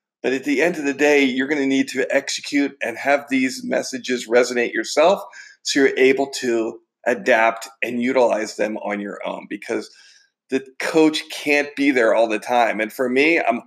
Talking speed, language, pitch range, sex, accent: 190 wpm, English, 125-165 Hz, male, American